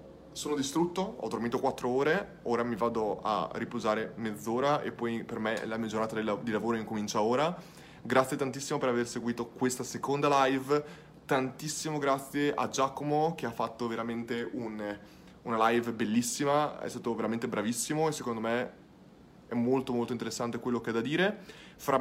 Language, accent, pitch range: Italian, native, 110-135 Hz